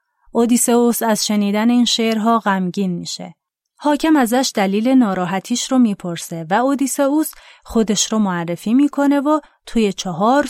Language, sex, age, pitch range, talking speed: Persian, female, 30-49, 190-260 Hz, 125 wpm